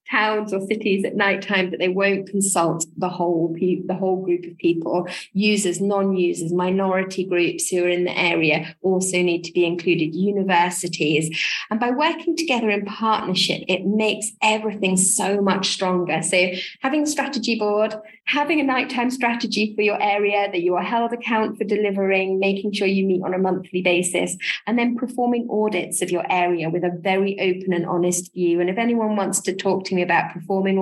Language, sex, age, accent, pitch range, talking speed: English, female, 20-39, British, 175-210 Hz, 190 wpm